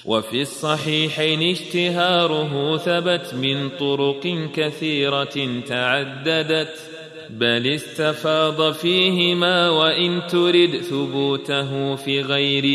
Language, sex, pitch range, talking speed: Arabic, male, 140-175 Hz, 75 wpm